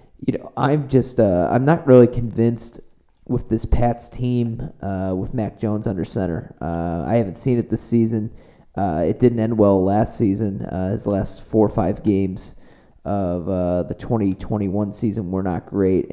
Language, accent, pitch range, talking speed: English, American, 95-115 Hz, 175 wpm